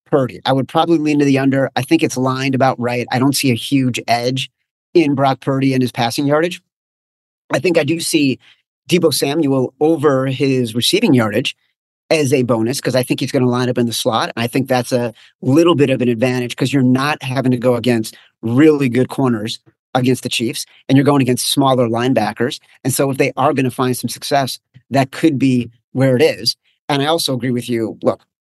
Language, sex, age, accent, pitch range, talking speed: English, male, 40-59, American, 120-145 Hz, 215 wpm